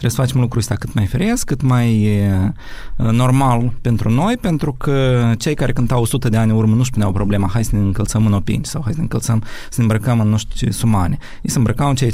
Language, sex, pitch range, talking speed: Romanian, male, 105-130 Hz, 230 wpm